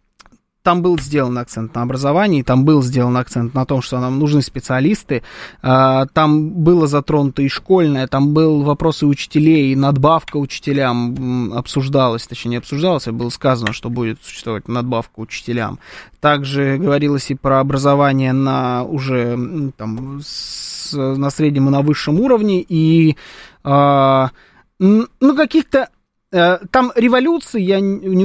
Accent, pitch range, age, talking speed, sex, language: native, 135-175 Hz, 20-39, 135 wpm, male, Russian